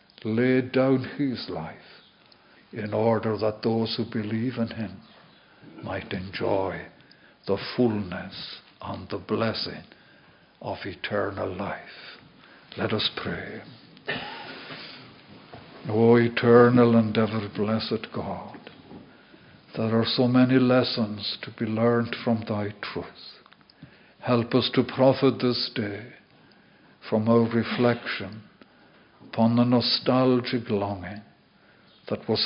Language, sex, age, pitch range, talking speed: German, male, 60-79, 110-125 Hz, 105 wpm